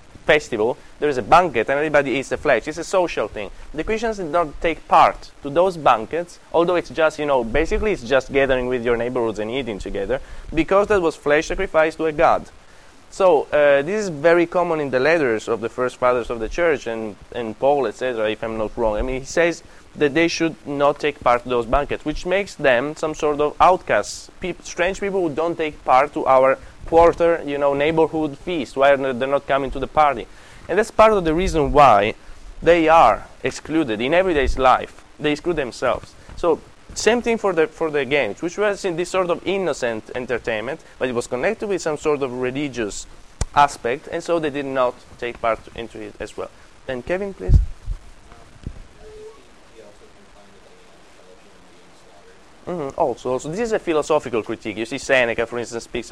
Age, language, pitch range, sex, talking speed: 20-39, English, 125-170 Hz, male, 195 wpm